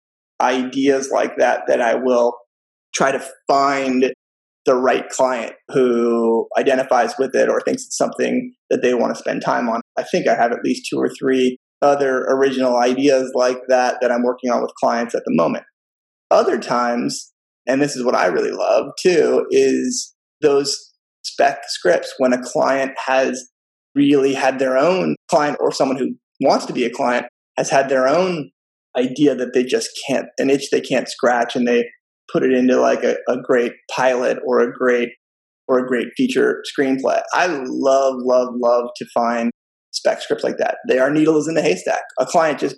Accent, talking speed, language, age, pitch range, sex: American, 185 wpm, English, 20-39, 120-155 Hz, male